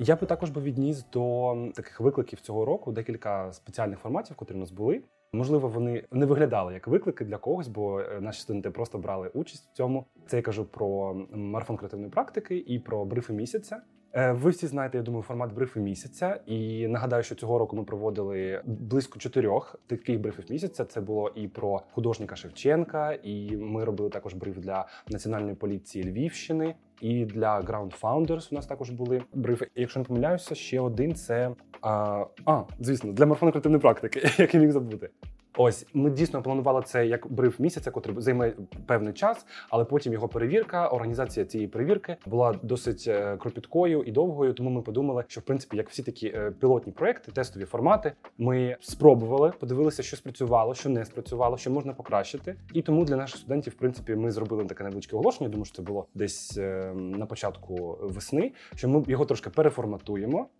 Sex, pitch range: male, 105-135 Hz